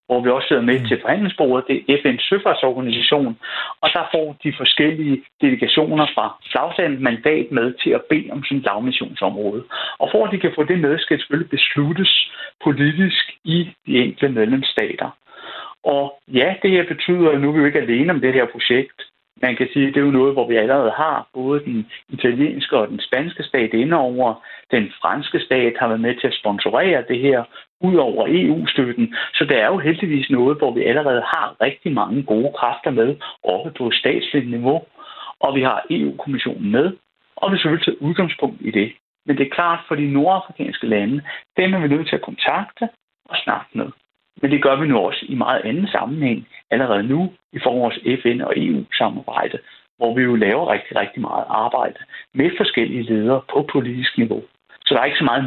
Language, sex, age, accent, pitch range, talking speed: Danish, male, 60-79, native, 130-165 Hz, 195 wpm